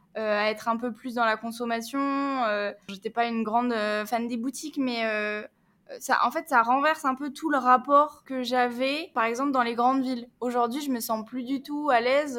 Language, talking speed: French, 230 wpm